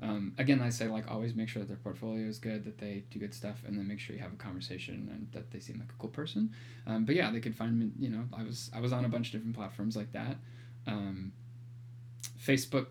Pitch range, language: 110-125 Hz, English